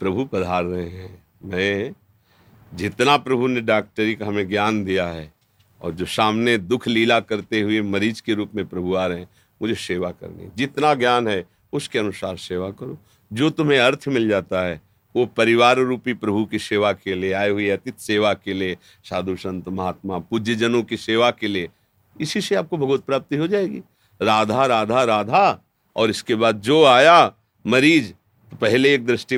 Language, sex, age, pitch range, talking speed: Hindi, male, 50-69, 100-130 Hz, 180 wpm